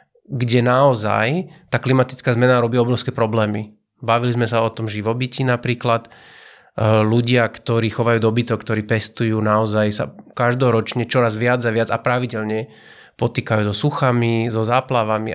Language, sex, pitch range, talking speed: Slovak, male, 110-125 Hz, 135 wpm